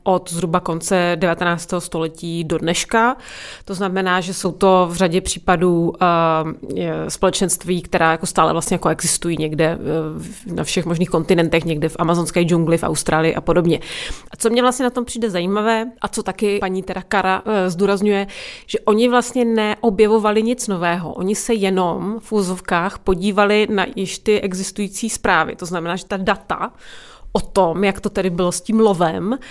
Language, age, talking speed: Czech, 30-49, 170 wpm